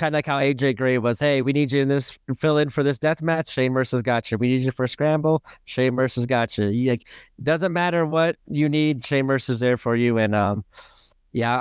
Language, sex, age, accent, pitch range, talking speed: English, male, 30-49, American, 130-180 Hz, 250 wpm